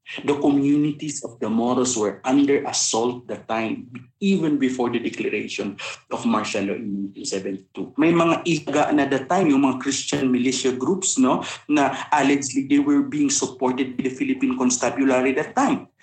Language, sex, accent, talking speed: Filipino, male, native, 160 wpm